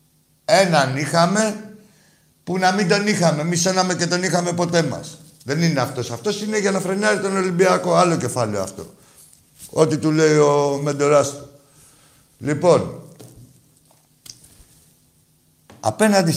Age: 60-79